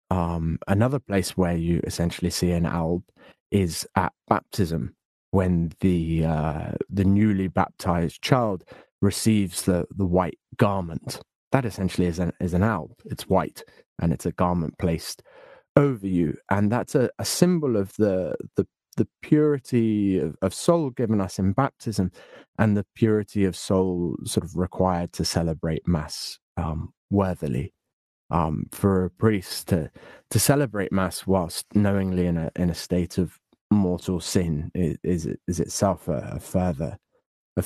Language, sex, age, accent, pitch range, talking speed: English, male, 30-49, British, 85-100 Hz, 155 wpm